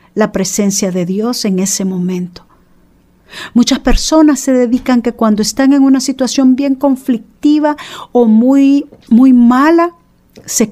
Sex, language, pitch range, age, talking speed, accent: female, Spanish, 180-245 Hz, 50-69, 135 wpm, American